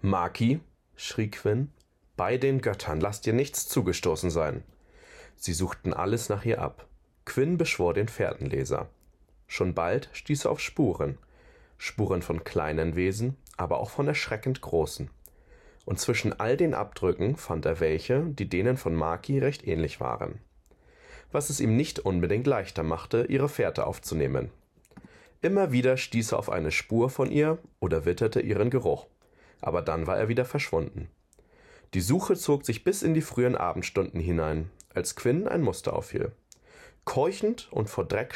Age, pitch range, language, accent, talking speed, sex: 30-49, 95-145 Hz, German, German, 155 wpm, male